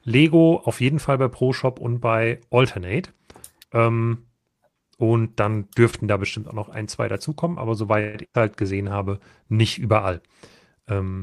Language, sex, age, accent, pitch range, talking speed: German, male, 40-59, German, 110-135 Hz, 160 wpm